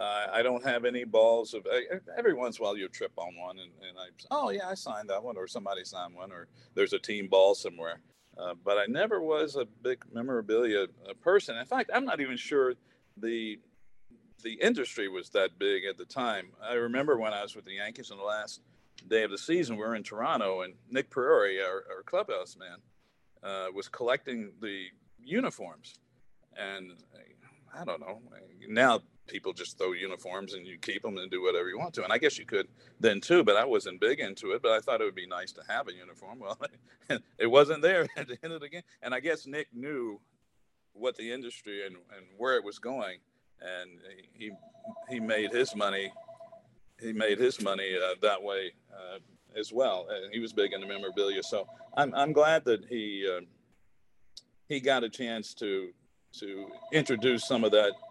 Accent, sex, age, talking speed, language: American, male, 50-69, 200 wpm, English